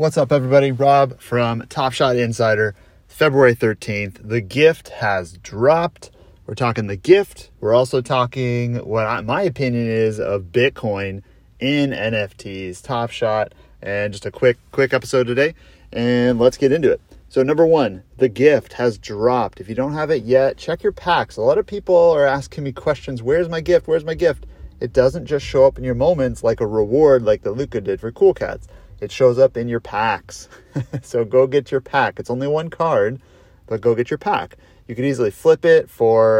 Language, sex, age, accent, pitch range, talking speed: English, male, 30-49, American, 105-140 Hz, 195 wpm